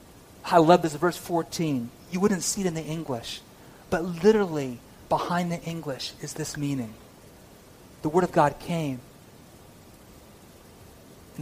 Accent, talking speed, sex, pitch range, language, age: American, 135 wpm, male, 135-190 Hz, English, 40-59